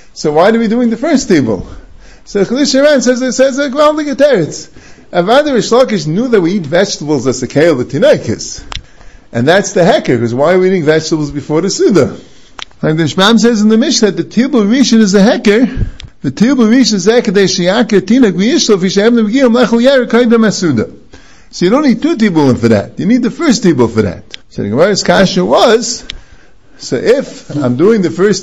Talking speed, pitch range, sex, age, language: 200 wpm, 180-250 Hz, male, 50-69, English